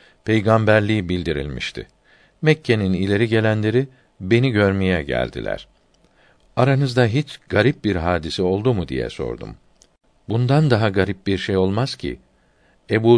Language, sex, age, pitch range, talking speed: Turkish, male, 60-79, 90-120 Hz, 115 wpm